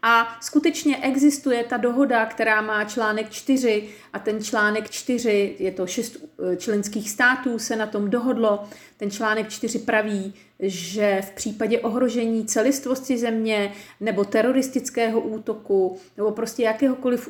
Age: 40-59